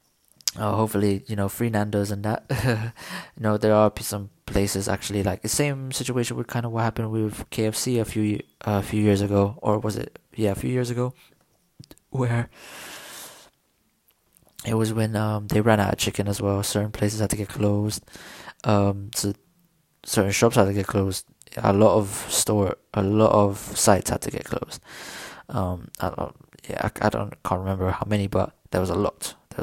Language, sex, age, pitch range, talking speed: English, male, 20-39, 100-120 Hz, 190 wpm